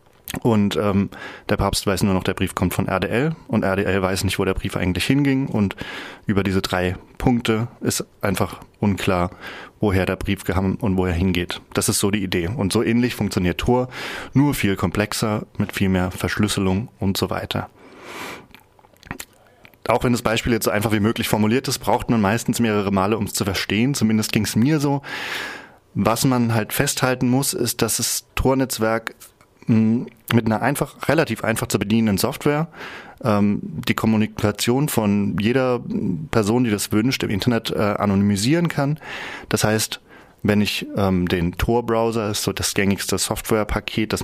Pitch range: 100-120 Hz